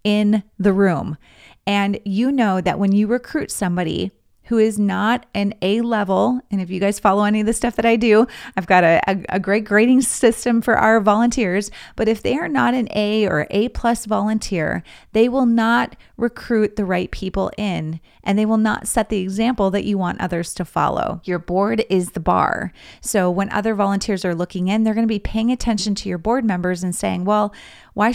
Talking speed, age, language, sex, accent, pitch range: 200 wpm, 30-49, English, female, American, 185-230 Hz